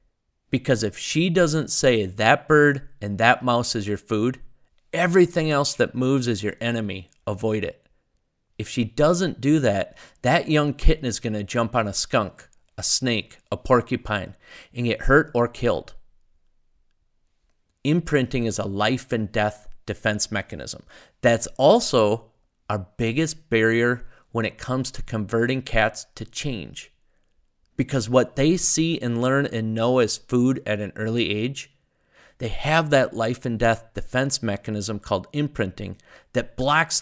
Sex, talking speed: male, 150 wpm